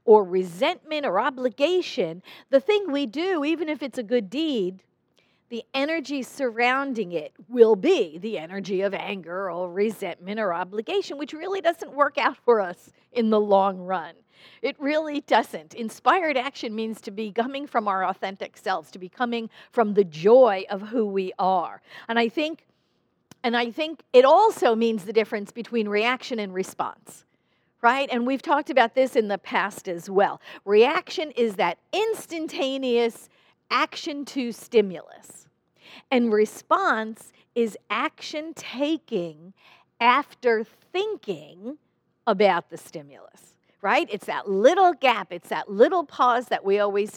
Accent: American